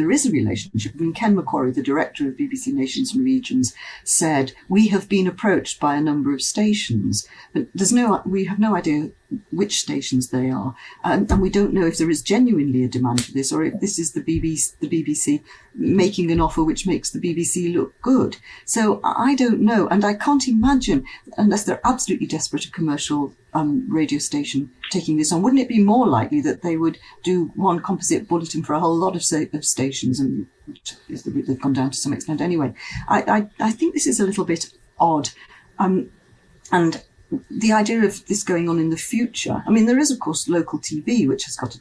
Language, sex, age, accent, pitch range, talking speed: English, female, 50-69, British, 145-220 Hz, 205 wpm